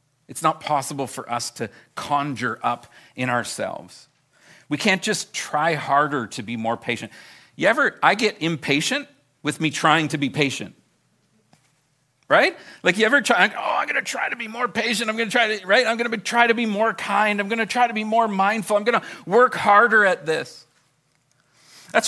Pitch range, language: 130-195 Hz, English